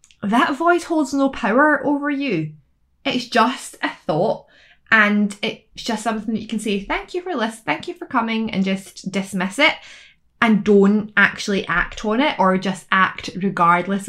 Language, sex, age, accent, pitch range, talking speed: English, female, 20-39, British, 185-235 Hz, 175 wpm